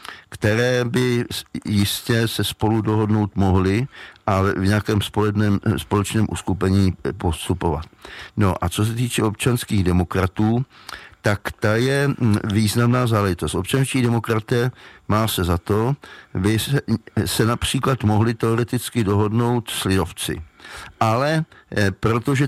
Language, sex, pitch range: Czech, male, 95-115 Hz